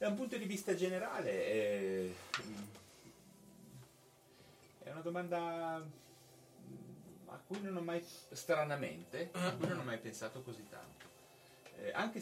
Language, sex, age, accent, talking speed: Italian, male, 30-49, native, 130 wpm